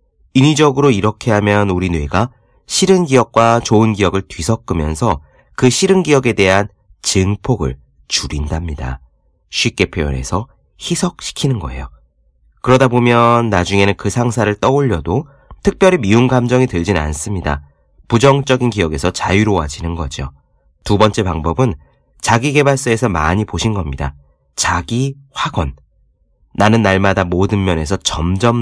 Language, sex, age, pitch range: Korean, male, 30-49, 80-120 Hz